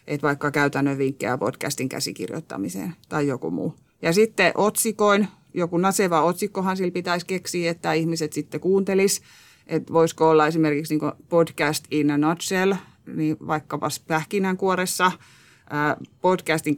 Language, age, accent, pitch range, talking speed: Finnish, 30-49, native, 150-185 Hz, 125 wpm